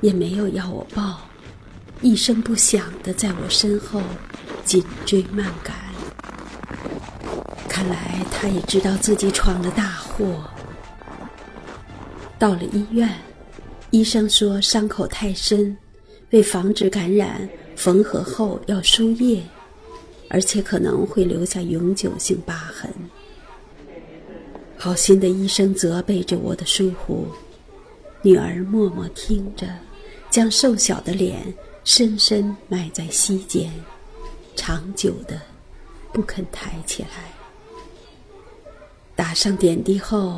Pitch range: 180-210 Hz